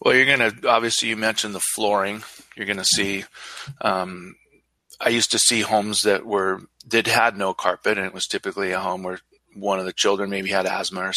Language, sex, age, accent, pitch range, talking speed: English, male, 30-49, American, 95-110 Hz, 215 wpm